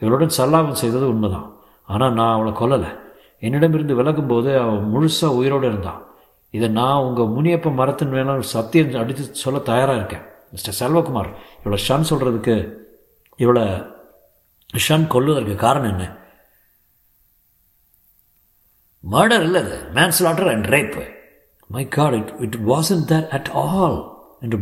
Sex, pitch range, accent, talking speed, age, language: male, 110-135 Hz, native, 110 wpm, 50-69, Tamil